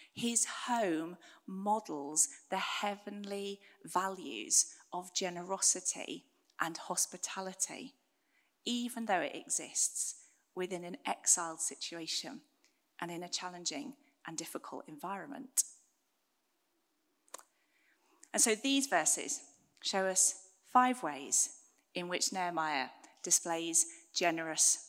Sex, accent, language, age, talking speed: female, British, English, 30-49, 90 wpm